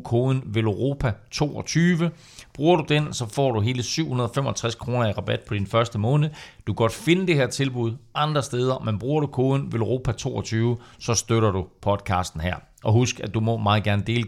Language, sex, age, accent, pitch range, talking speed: Danish, male, 40-59, native, 100-125 Hz, 195 wpm